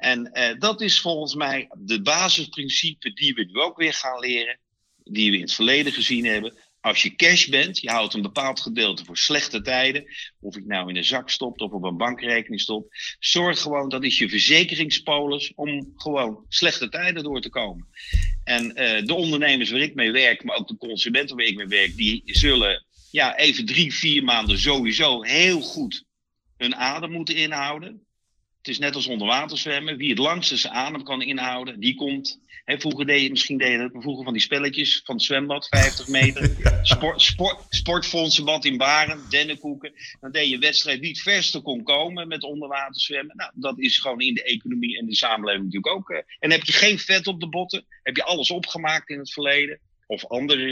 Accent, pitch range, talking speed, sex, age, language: Dutch, 125-165 Hz, 200 wpm, male, 50-69, Dutch